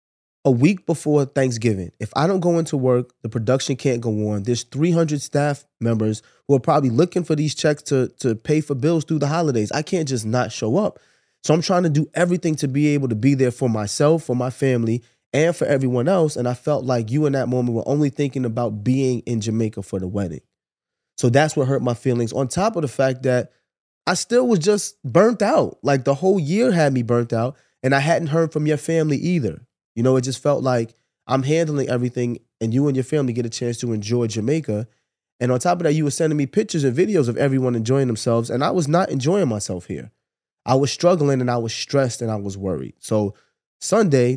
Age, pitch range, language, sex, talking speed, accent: 20-39, 115-145 Hz, English, male, 230 wpm, American